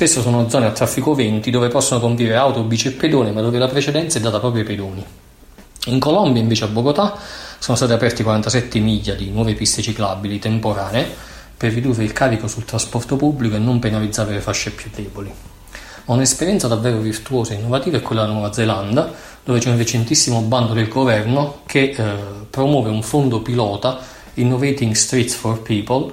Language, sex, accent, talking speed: Italian, male, native, 180 wpm